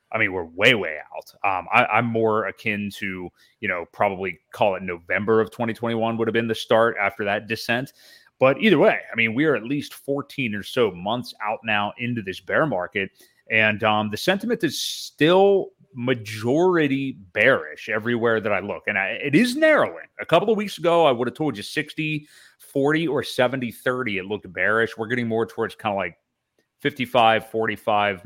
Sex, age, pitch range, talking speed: male, 30-49, 100-130 Hz, 190 wpm